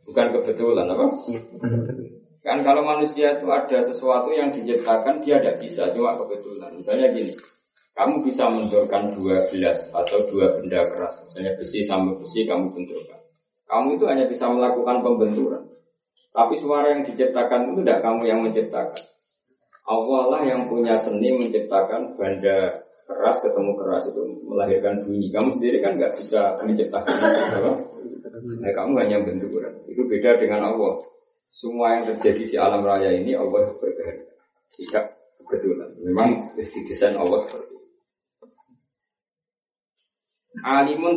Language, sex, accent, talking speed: Indonesian, male, native, 135 wpm